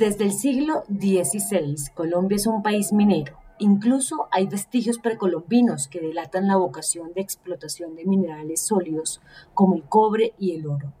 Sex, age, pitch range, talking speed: female, 40-59, 155-205 Hz, 155 wpm